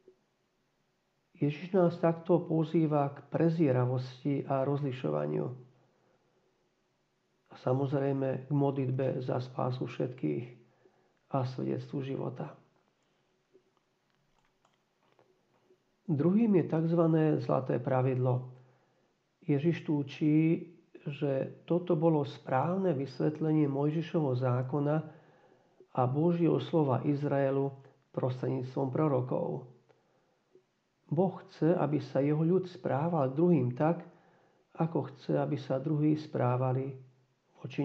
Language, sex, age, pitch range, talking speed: Slovak, male, 50-69, 135-165 Hz, 85 wpm